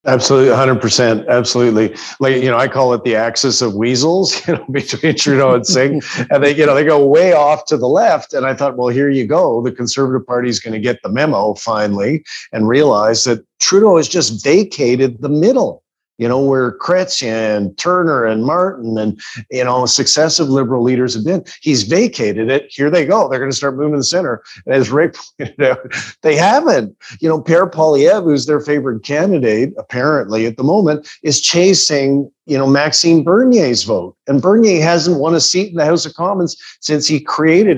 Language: English